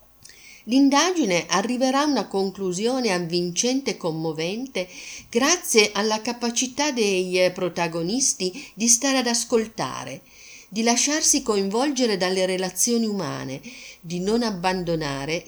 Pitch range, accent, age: 160-220 Hz, native, 50-69